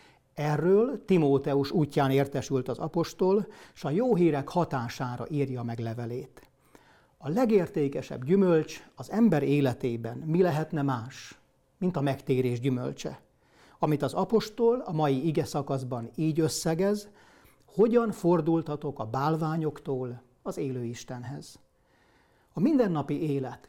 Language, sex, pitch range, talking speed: Hungarian, male, 130-170 Hz, 110 wpm